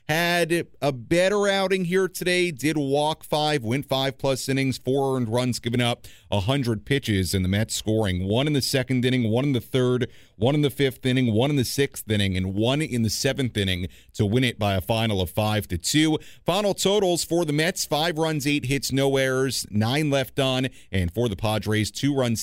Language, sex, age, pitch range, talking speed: English, male, 40-59, 105-145 Hz, 210 wpm